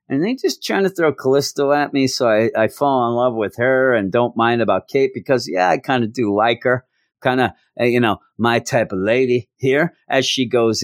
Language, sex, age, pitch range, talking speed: English, male, 40-59, 100-125 Hz, 235 wpm